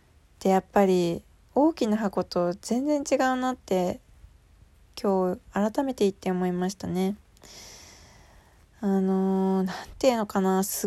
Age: 20-39